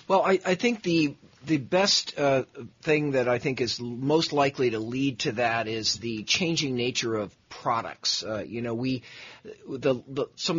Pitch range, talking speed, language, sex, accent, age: 115-145 Hz, 180 wpm, English, male, American, 50-69